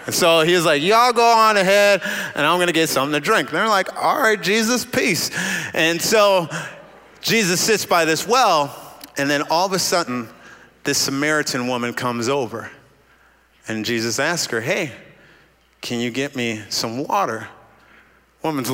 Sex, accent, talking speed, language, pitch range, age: male, American, 165 wpm, English, 130-190 Hz, 30-49